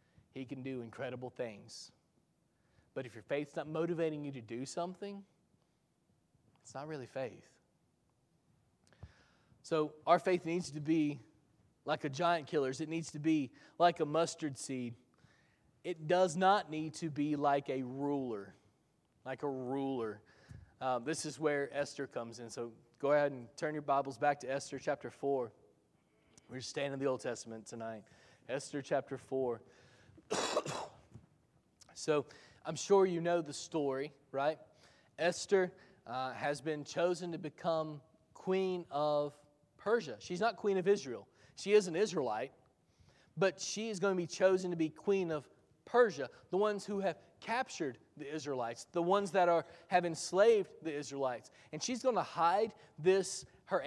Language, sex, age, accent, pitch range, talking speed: English, male, 20-39, American, 135-175 Hz, 155 wpm